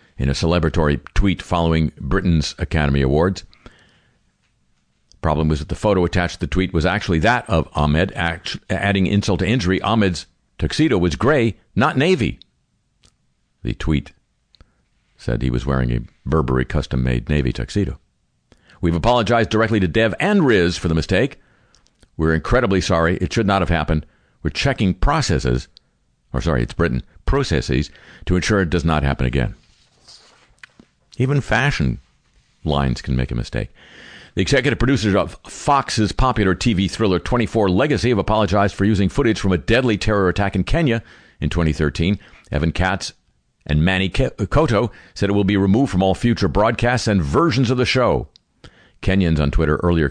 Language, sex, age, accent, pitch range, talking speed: English, male, 50-69, American, 75-100 Hz, 155 wpm